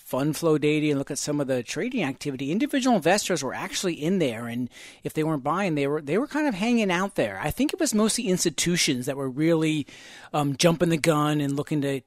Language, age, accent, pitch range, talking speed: English, 40-59, American, 140-165 Hz, 235 wpm